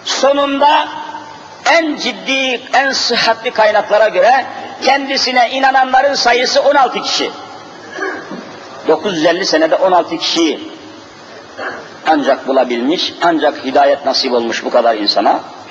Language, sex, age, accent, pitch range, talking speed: Turkish, male, 50-69, native, 235-295 Hz, 100 wpm